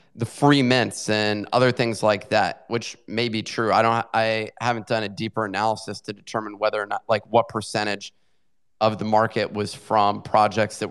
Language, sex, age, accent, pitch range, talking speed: English, male, 30-49, American, 105-120 Hz, 195 wpm